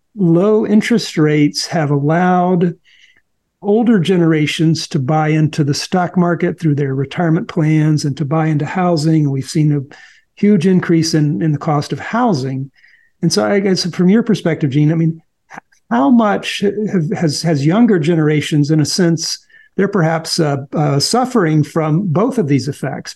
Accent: American